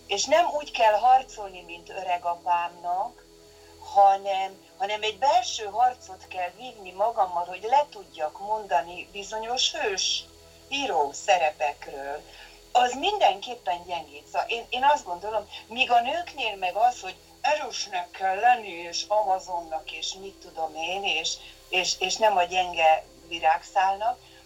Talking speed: 135 wpm